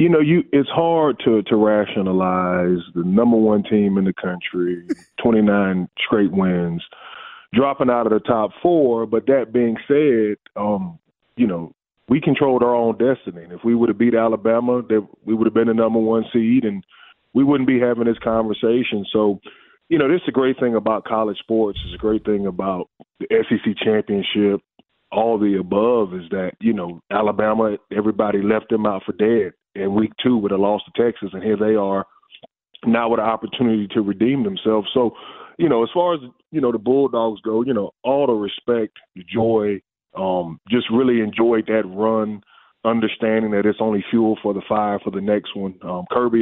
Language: English